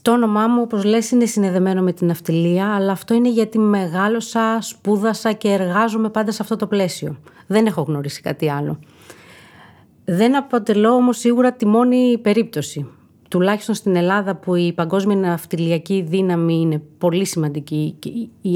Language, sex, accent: Greek, female, native